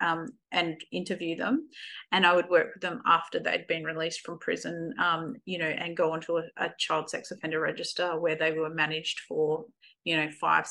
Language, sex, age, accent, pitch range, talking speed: English, female, 30-49, Australian, 170-210 Hz, 200 wpm